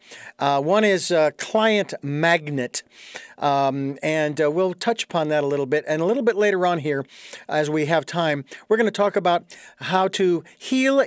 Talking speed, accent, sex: 190 wpm, American, male